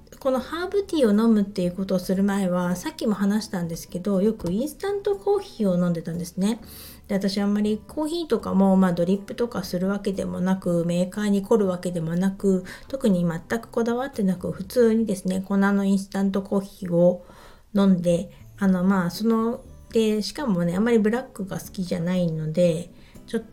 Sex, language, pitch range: female, Japanese, 180-235 Hz